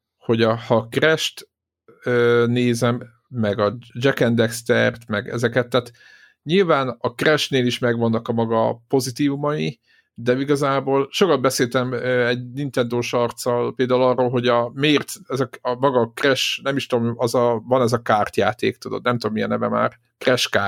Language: Hungarian